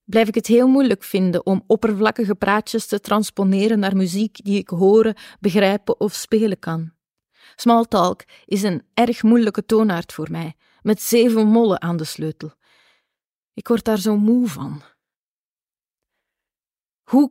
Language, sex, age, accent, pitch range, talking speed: Dutch, female, 30-49, Dutch, 185-220 Hz, 140 wpm